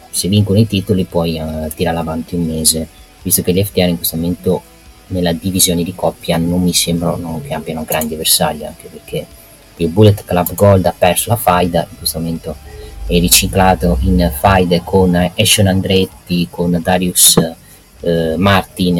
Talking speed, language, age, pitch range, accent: 165 wpm, Italian, 30-49, 85-105 Hz, native